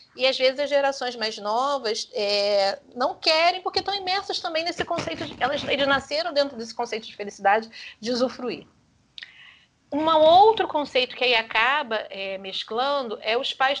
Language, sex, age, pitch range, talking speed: Portuguese, female, 40-59, 220-275 Hz, 165 wpm